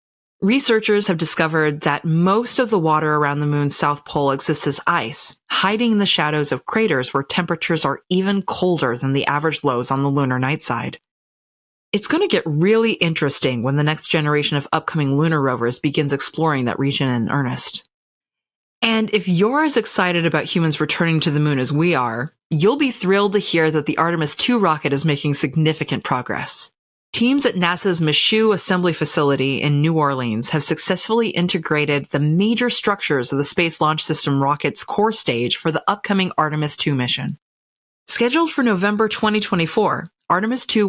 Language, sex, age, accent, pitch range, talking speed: English, female, 30-49, American, 145-200 Hz, 175 wpm